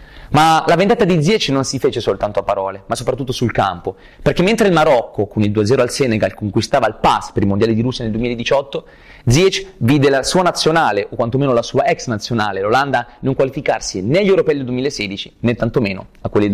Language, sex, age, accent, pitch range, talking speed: Italian, male, 30-49, native, 110-155 Hz, 210 wpm